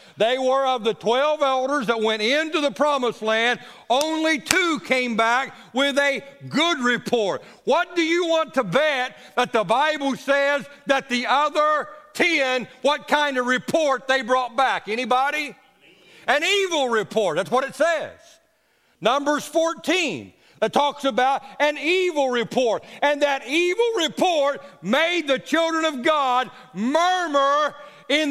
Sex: male